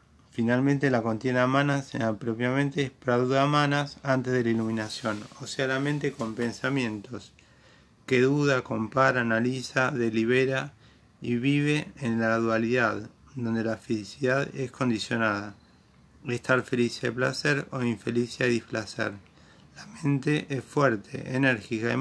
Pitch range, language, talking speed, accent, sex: 115-135 Hz, Spanish, 125 wpm, Argentinian, male